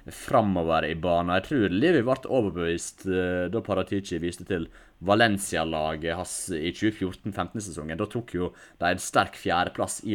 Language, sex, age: English, male, 30-49